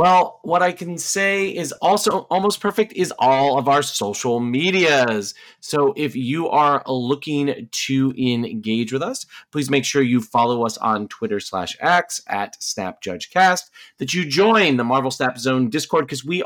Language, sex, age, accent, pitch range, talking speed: English, male, 30-49, American, 110-160 Hz, 175 wpm